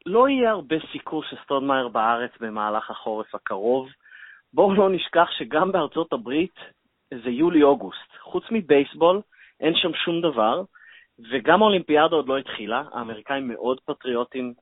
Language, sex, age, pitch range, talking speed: Hebrew, male, 30-49, 125-170 Hz, 130 wpm